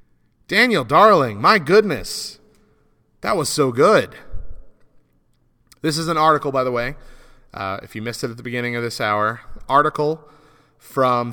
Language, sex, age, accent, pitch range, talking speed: English, male, 30-49, American, 110-145 Hz, 150 wpm